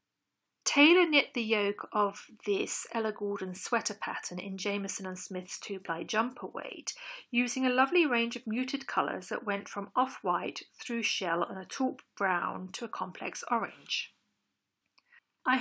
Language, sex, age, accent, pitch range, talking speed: English, female, 40-59, British, 200-270 Hz, 150 wpm